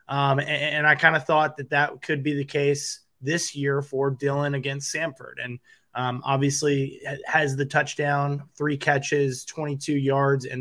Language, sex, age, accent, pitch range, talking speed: English, male, 20-39, American, 140-160 Hz, 170 wpm